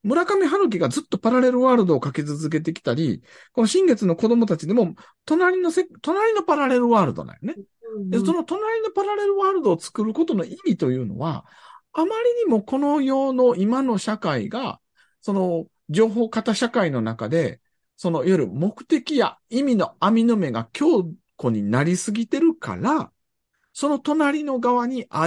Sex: male